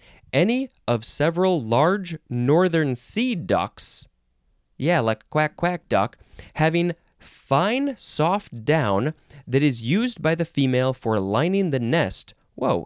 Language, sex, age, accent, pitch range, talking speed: English, male, 20-39, American, 110-170 Hz, 125 wpm